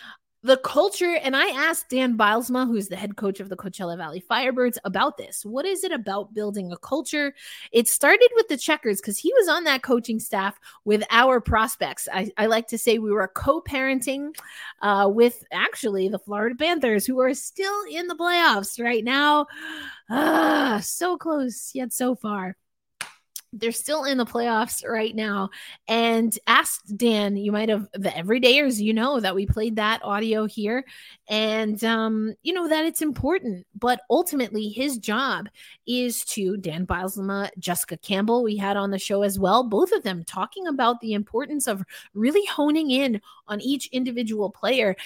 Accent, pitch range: American, 205-270 Hz